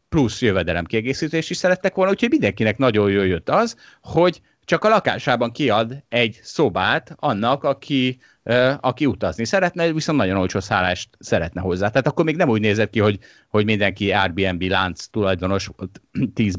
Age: 30-49